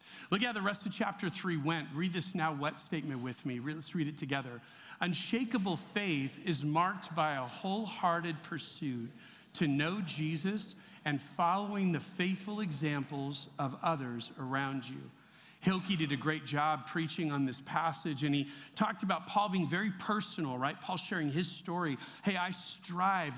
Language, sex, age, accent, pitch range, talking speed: English, male, 40-59, American, 145-195 Hz, 165 wpm